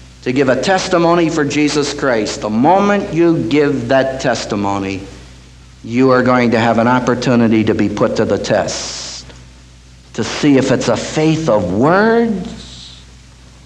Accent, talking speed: American, 150 wpm